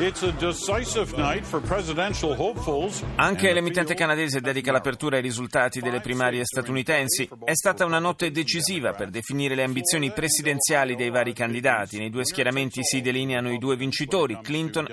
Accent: native